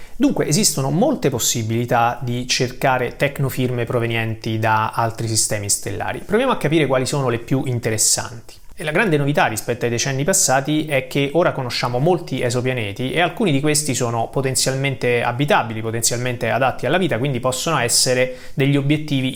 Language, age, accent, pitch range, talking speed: Italian, 30-49, native, 115-145 Hz, 155 wpm